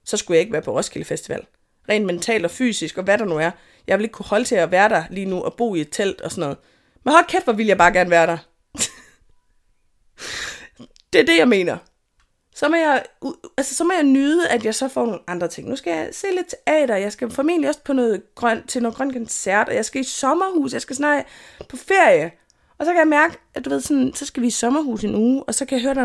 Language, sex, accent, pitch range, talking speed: Danish, female, native, 210-285 Hz, 265 wpm